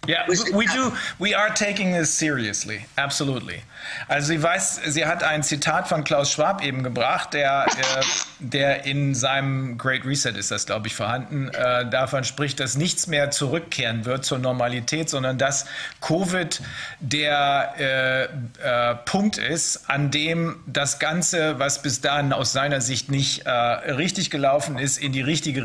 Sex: male